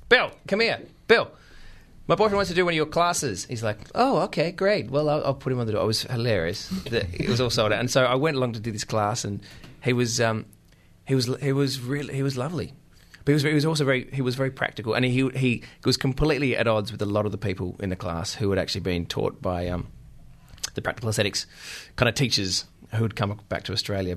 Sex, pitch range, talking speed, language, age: male, 100-135 Hz, 250 wpm, English, 20-39